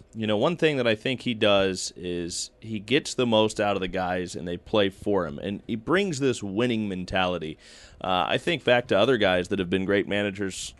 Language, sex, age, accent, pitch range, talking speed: English, male, 30-49, American, 95-115 Hz, 230 wpm